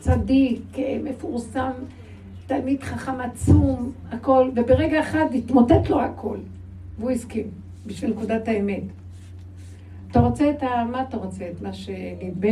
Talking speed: 125 wpm